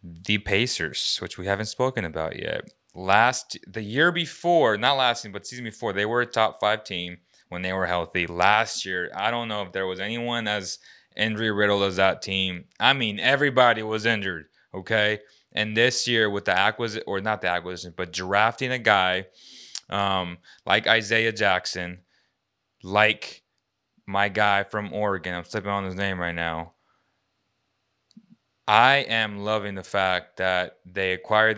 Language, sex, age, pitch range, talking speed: English, male, 20-39, 90-110 Hz, 165 wpm